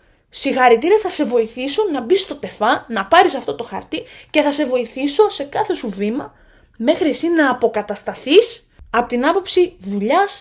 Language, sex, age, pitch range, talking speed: Greek, female, 20-39, 225-315 Hz, 165 wpm